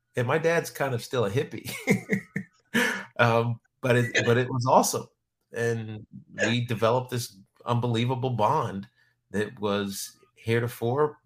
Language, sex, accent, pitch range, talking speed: English, male, American, 105-120 Hz, 130 wpm